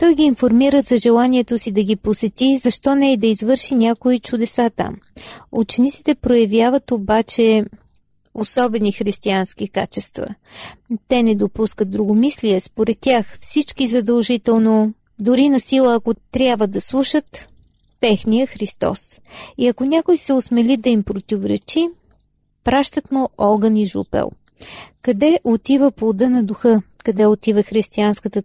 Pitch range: 215-255 Hz